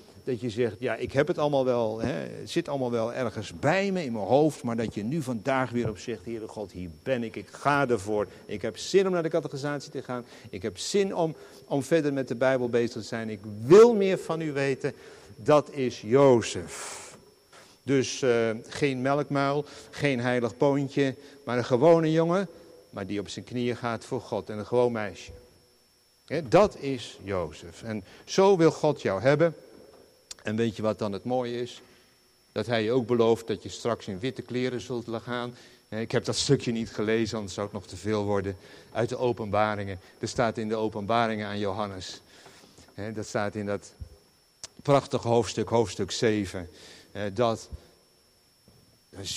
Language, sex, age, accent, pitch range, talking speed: Dutch, male, 50-69, Dutch, 110-140 Hz, 185 wpm